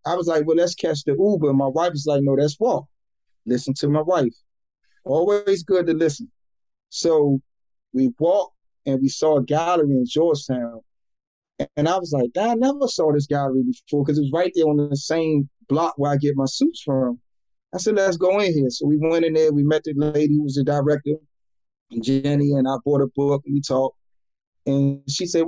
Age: 30-49